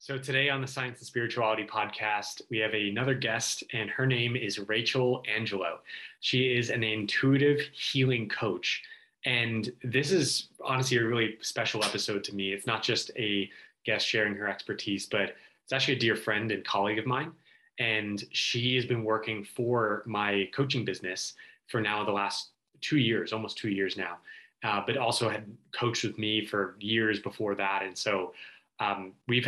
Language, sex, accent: English, male, American